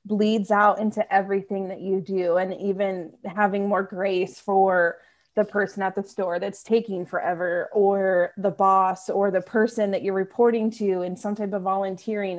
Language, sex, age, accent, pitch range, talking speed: English, female, 20-39, American, 195-235 Hz, 175 wpm